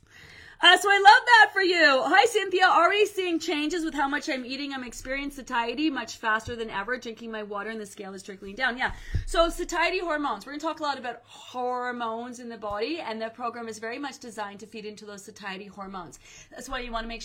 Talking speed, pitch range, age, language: 235 wpm, 200-280 Hz, 30-49, English